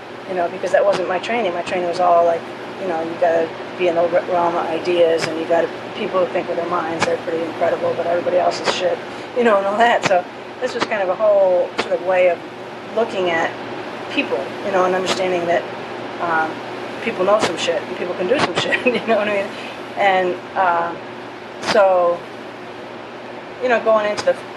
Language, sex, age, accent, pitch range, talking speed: English, female, 40-59, American, 175-200 Hz, 210 wpm